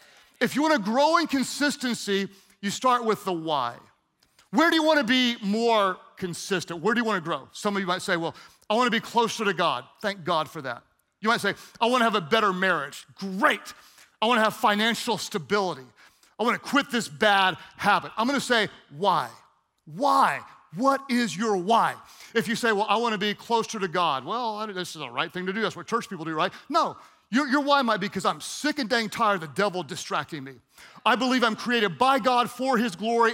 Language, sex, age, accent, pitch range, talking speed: English, male, 40-59, American, 185-250 Hz, 215 wpm